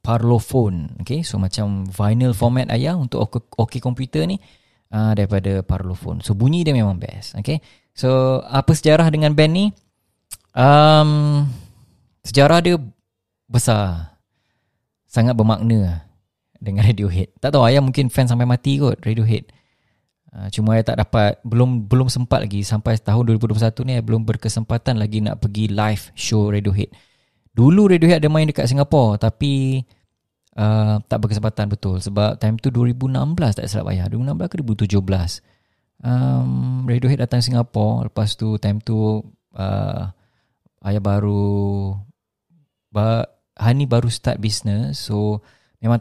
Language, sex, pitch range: English, male, 100-125 Hz